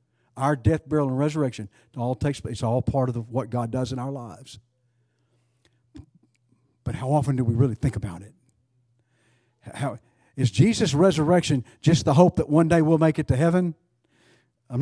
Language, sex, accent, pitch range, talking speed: English, male, American, 120-160 Hz, 180 wpm